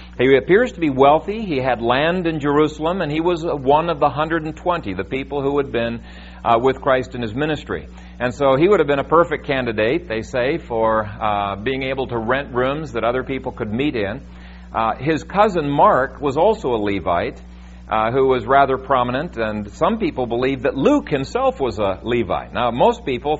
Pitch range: 105-145 Hz